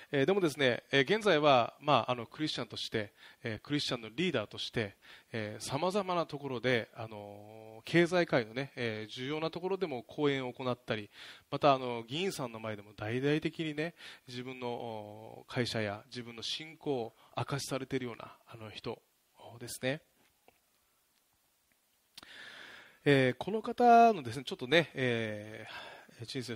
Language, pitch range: Japanese, 115-155 Hz